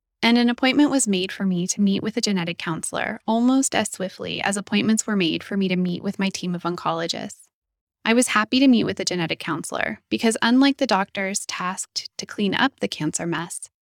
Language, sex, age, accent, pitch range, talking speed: English, female, 10-29, American, 180-230 Hz, 215 wpm